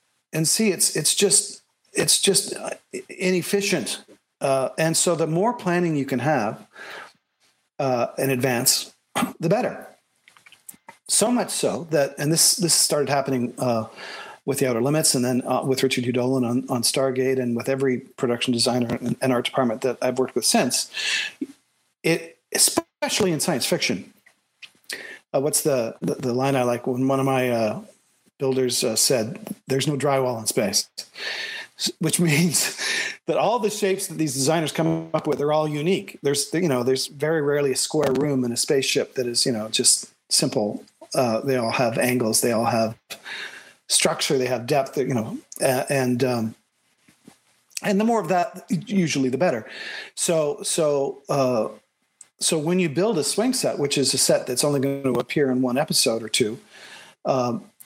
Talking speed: 170 wpm